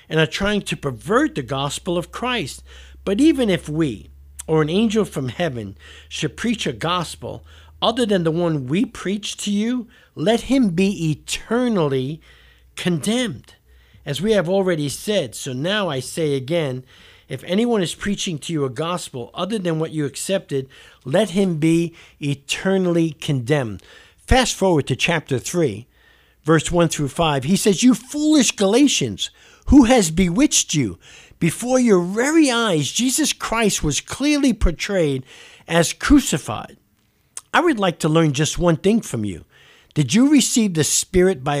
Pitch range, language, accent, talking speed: 145-210 Hz, English, American, 155 wpm